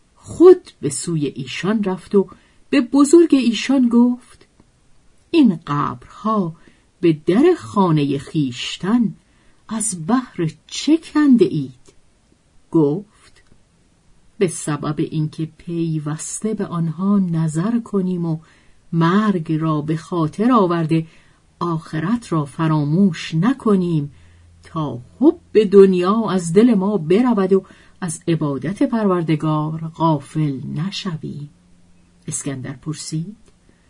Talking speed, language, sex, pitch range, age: 100 wpm, Persian, female, 155-215 Hz, 50-69